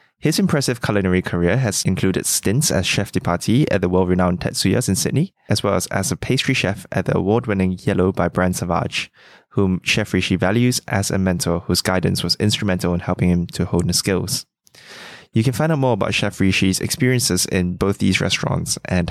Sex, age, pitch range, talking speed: male, 10-29, 90-120 Hz, 200 wpm